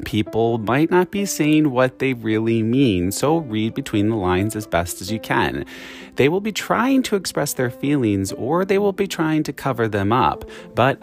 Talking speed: 200 wpm